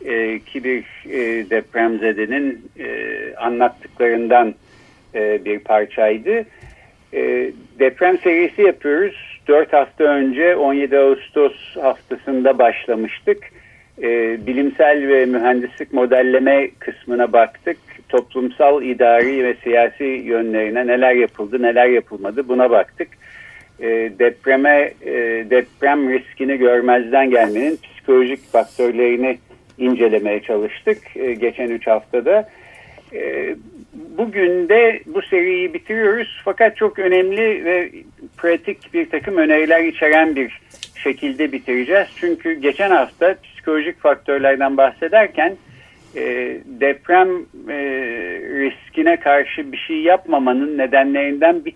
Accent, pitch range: native, 125-205 Hz